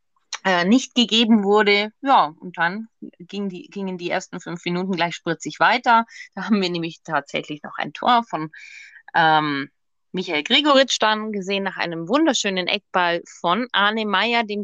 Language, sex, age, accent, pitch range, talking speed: German, female, 30-49, German, 180-220 Hz, 150 wpm